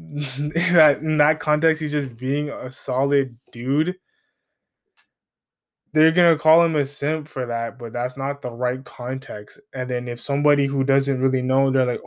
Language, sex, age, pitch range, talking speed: English, male, 20-39, 125-150 Hz, 170 wpm